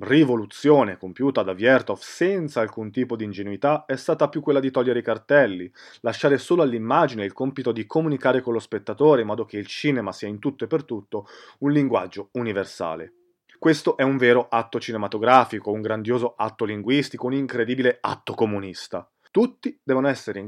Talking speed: 175 wpm